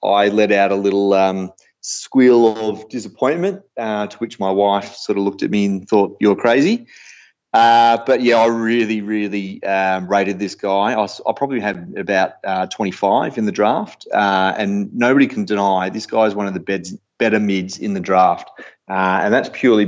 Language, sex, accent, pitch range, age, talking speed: English, male, Australian, 95-110 Hz, 30-49, 195 wpm